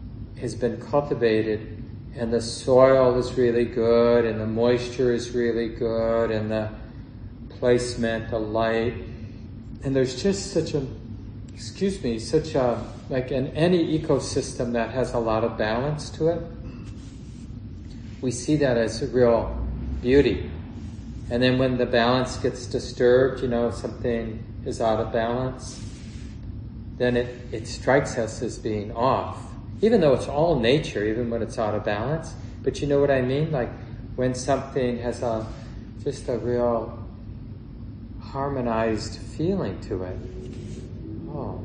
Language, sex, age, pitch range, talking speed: English, male, 40-59, 110-125 Hz, 145 wpm